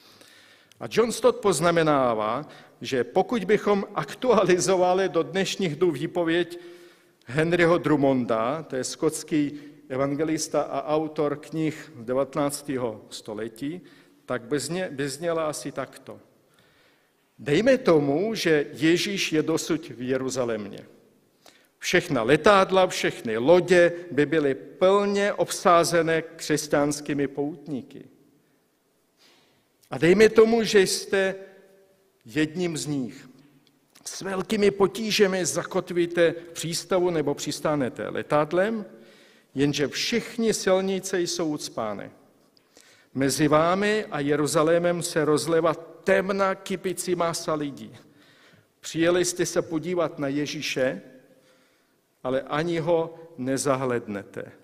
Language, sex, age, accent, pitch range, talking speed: Czech, male, 50-69, native, 145-185 Hz, 95 wpm